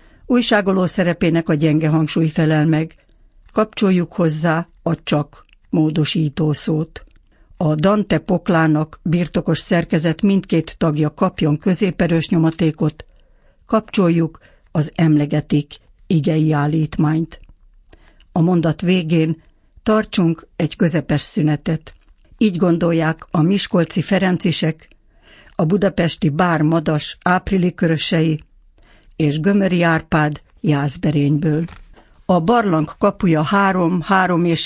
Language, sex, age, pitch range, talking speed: Hungarian, female, 60-79, 155-185 Hz, 90 wpm